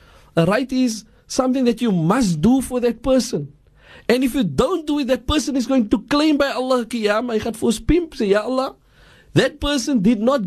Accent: South African